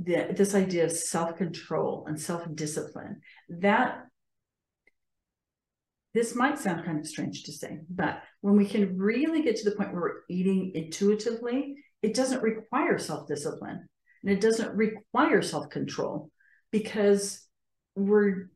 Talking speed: 125 wpm